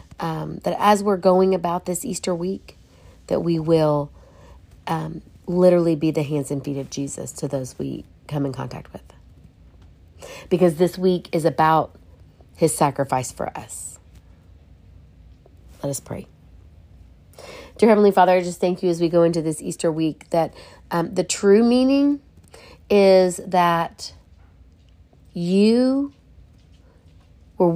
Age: 40-59